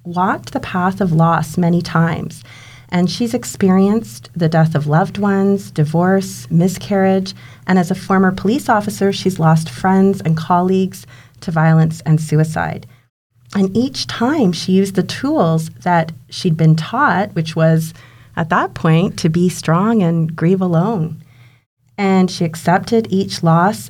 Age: 30-49